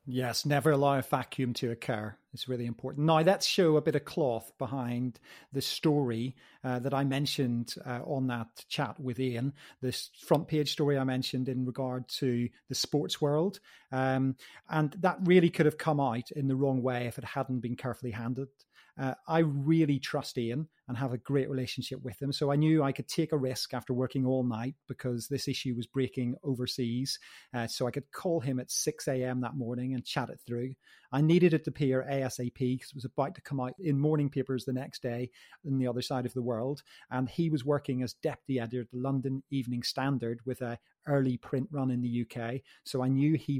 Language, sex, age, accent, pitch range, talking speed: English, male, 30-49, British, 125-145 Hz, 215 wpm